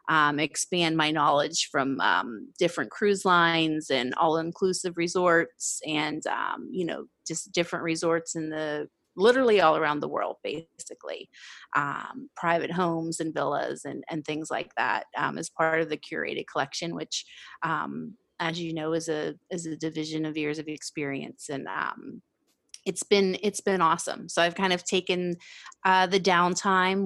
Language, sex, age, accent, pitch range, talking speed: English, female, 30-49, American, 155-175 Hz, 160 wpm